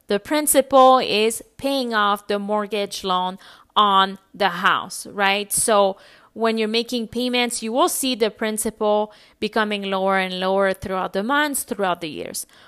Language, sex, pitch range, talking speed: English, female, 205-280 Hz, 150 wpm